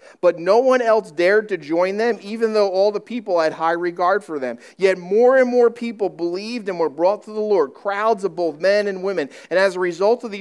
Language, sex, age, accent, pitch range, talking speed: English, male, 50-69, American, 185-230 Hz, 240 wpm